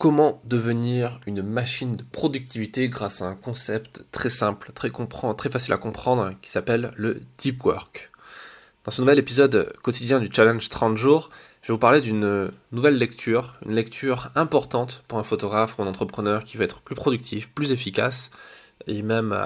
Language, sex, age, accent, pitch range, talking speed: French, male, 20-39, French, 110-130 Hz, 175 wpm